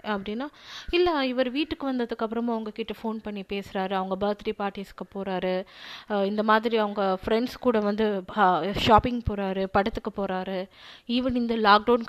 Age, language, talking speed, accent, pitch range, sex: 20-39, Tamil, 130 wpm, native, 200-270 Hz, female